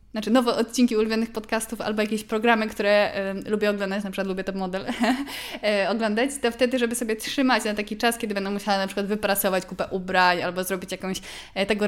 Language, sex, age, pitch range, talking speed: Polish, female, 20-39, 190-230 Hz, 185 wpm